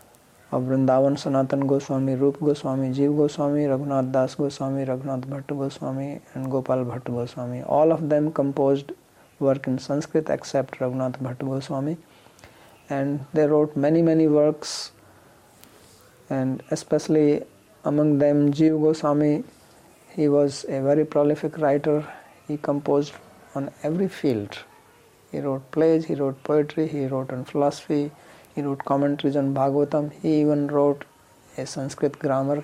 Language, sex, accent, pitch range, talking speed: English, male, Indian, 135-150 Hz, 135 wpm